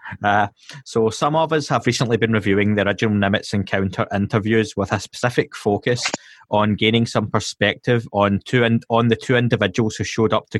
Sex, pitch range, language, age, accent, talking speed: male, 100-115 Hz, English, 20-39, British, 185 wpm